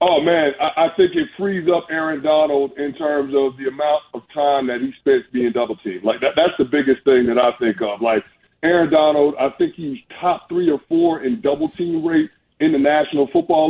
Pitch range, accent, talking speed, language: 125-155 Hz, American, 210 wpm, English